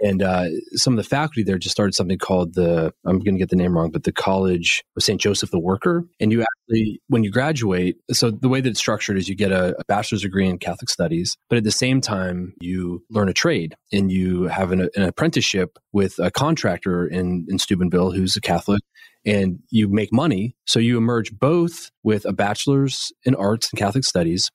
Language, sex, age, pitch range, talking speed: English, male, 30-49, 90-115 Hz, 215 wpm